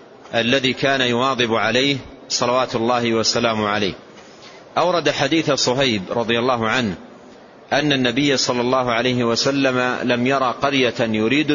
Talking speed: 125 wpm